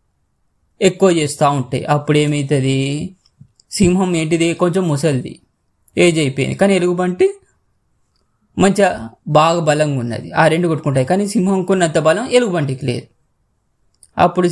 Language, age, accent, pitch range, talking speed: Telugu, 20-39, native, 140-190 Hz, 110 wpm